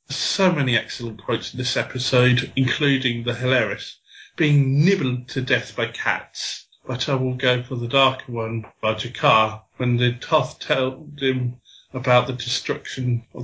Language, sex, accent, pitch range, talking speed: English, male, British, 120-145 Hz, 160 wpm